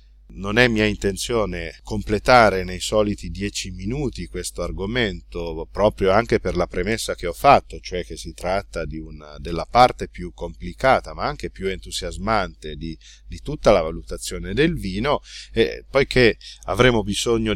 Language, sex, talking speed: Italian, male, 140 wpm